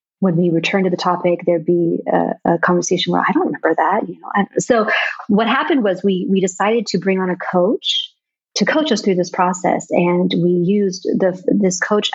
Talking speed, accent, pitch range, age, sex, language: 210 wpm, American, 175-200 Hz, 30-49, female, English